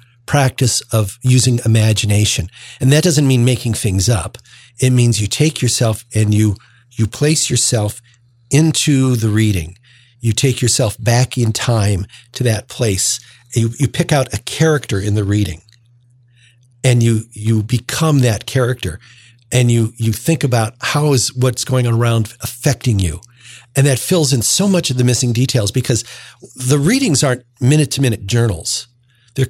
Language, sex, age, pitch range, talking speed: English, male, 50-69, 110-130 Hz, 165 wpm